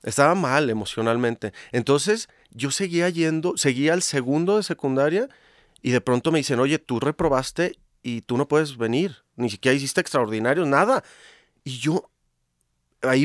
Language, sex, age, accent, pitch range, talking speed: Spanish, male, 30-49, Mexican, 115-160 Hz, 150 wpm